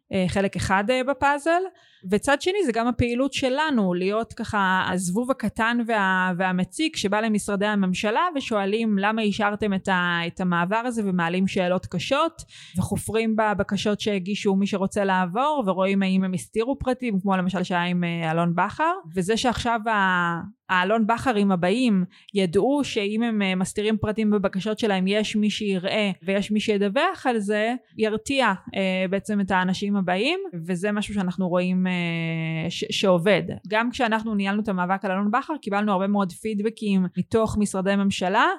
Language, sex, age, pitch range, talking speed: Hebrew, female, 20-39, 185-220 Hz, 145 wpm